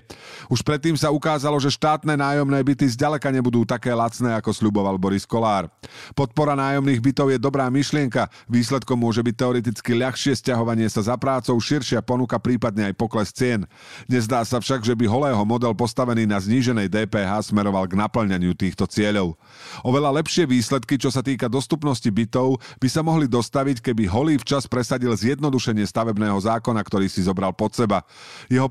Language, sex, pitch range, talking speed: Slovak, male, 105-140 Hz, 165 wpm